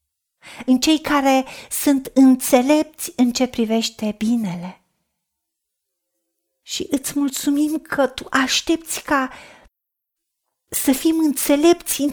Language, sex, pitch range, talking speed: Romanian, female, 245-305 Hz, 100 wpm